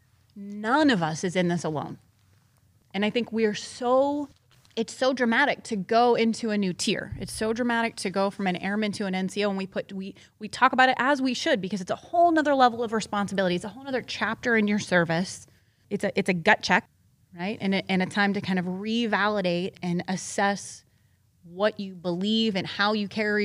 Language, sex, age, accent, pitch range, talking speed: English, female, 20-39, American, 190-240 Hz, 220 wpm